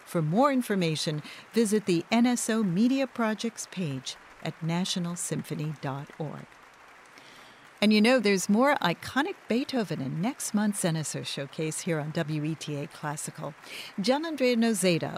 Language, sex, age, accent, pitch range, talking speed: English, female, 50-69, American, 155-225 Hz, 120 wpm